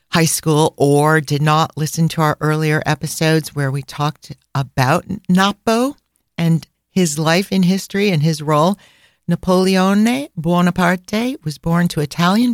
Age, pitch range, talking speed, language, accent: 50-69, 150-185 Hz, 140 wpm, English, American